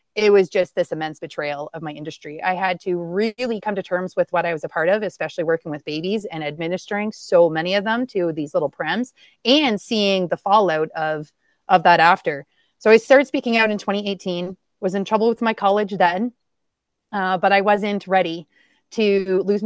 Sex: female